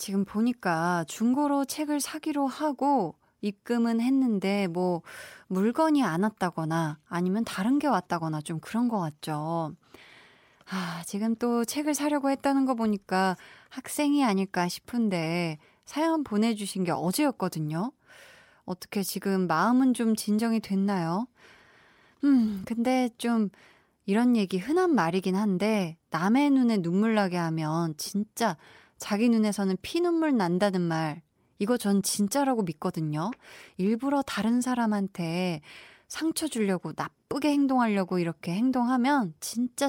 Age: 20-39